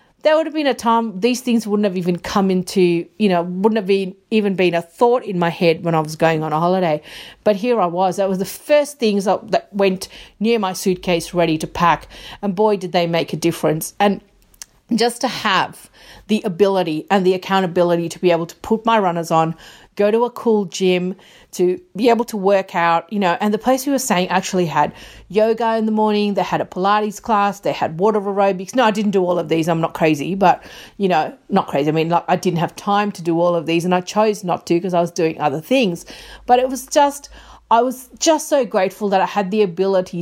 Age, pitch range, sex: 40-59, 170-215 Hz, female